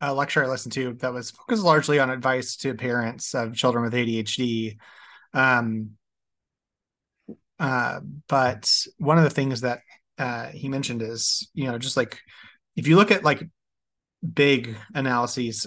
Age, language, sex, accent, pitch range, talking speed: 30-49, English, male, American, 120-150 Hz, 155 wpm